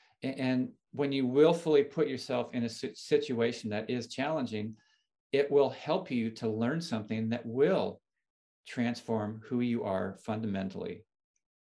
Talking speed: 135 wpm